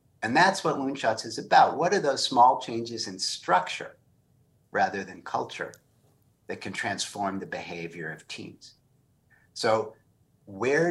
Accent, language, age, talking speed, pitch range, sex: American, English, 50-69, 140 wpm, 105-135 Hz, male